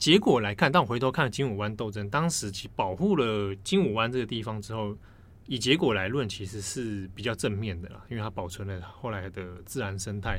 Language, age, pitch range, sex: Chinese, 20-39, 100-130 Hz, male